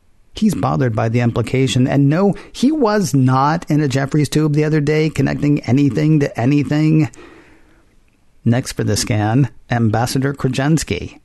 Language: English